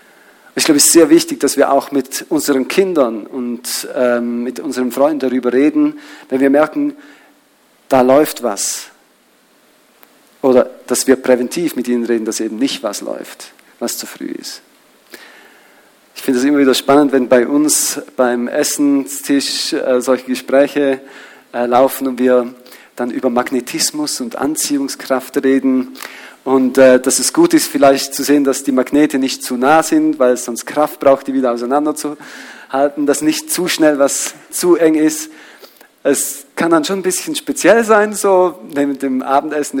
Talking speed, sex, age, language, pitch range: 160 wpm, male, 40-59, German, 125-165 Hz